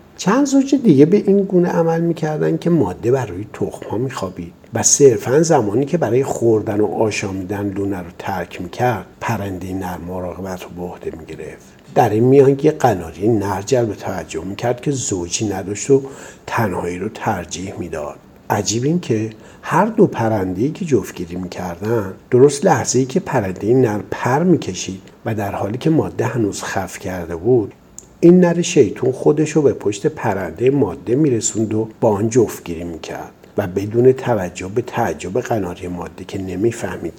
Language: Persian